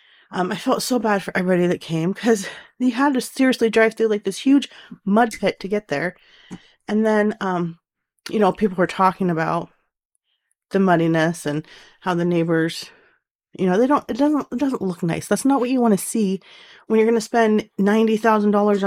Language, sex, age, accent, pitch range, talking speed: English, female, 30-49, American, 180-245 Hz, 195 wpm